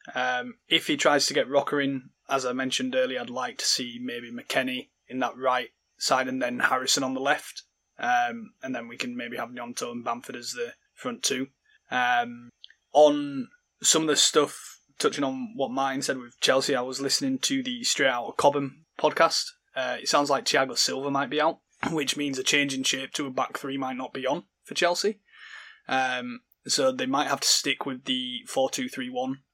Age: 20-39